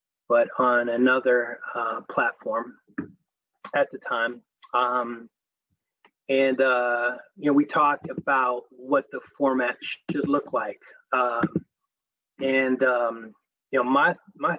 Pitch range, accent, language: 125-155 Hz, American, English